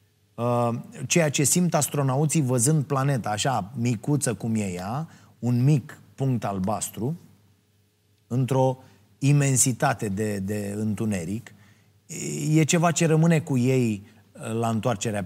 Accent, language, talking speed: native, Romanian, 110 wpm